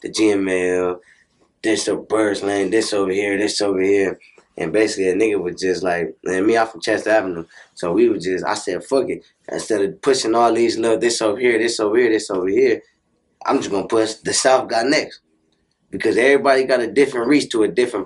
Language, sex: English, male